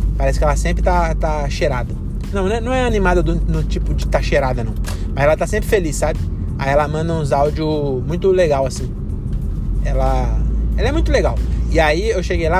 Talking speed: 205 wpm